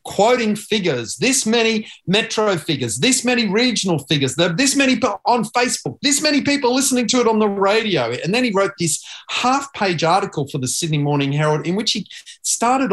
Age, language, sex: 40-59, English, male